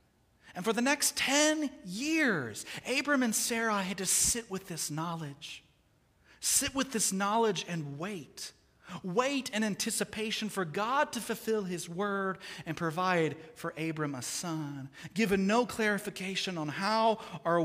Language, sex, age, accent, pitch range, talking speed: English, male, 40-59, American, 175-220 Hz, 145 wpm